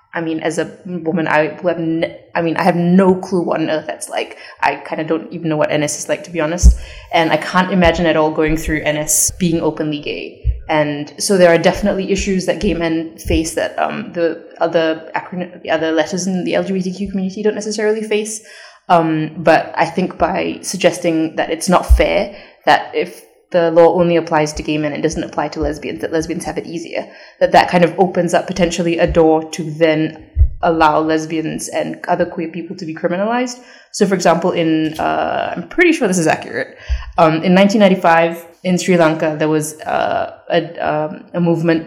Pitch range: 155-185 Hz